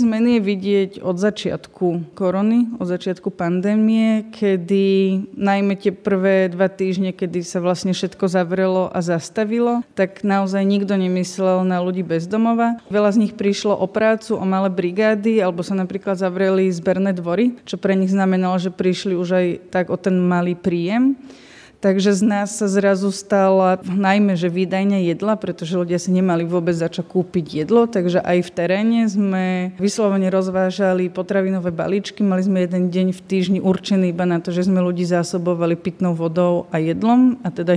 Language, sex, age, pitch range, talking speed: Slovak, female, 20-39, 180-205 Hz, 165 wpm